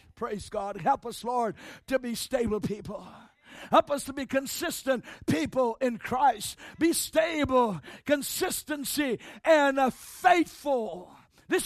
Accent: American